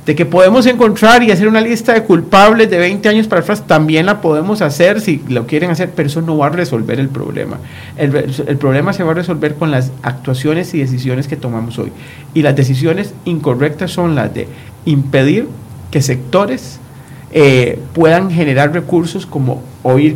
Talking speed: 190 wpm